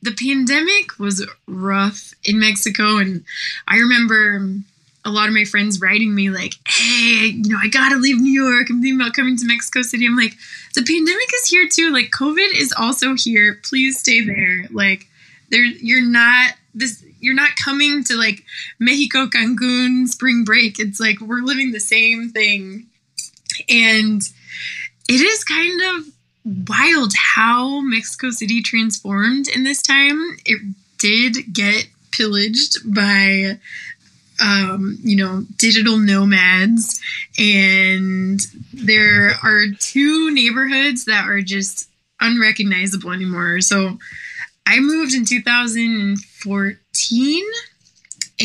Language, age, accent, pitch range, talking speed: English, 20-39, American, 200-260 Hz, 135 wpm